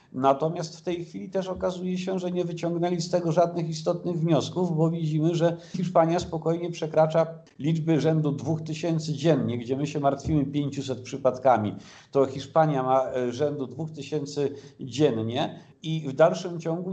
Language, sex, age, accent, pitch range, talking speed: Polish, male, 50-69, native, 140-170 Hz, 145 wpm